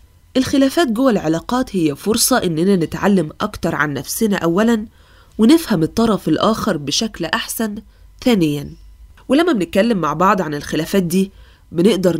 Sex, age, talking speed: female, 20-39, 125 wpm